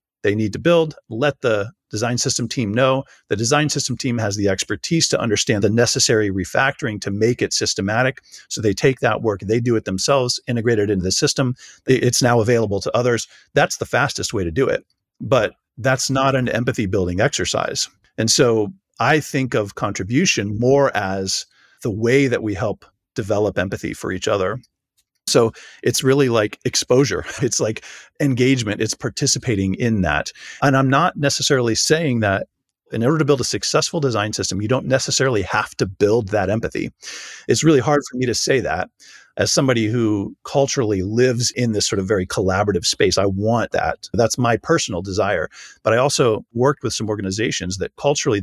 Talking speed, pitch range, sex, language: 180 wpm, 100-135 Hz, male, English